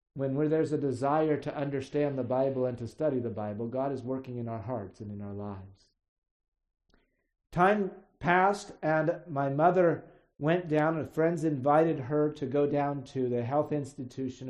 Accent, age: American, 50-69